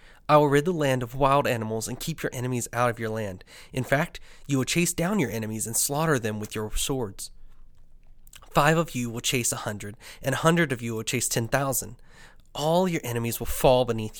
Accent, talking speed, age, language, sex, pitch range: American, 220 wpm, 20-39, English, male, 115-145 Hz